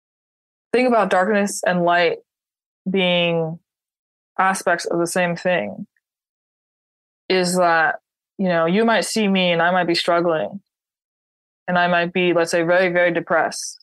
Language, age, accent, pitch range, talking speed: English, 20-39, American, 170-200 Hz, 145 wpm